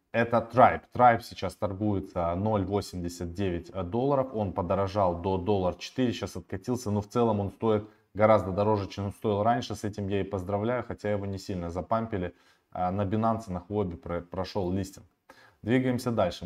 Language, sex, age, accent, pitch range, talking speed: Russian, male, 20-39, native, 95-110 Hz, 155 wpm